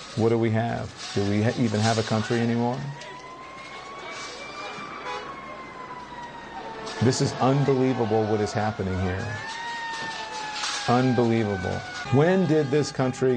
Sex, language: male, English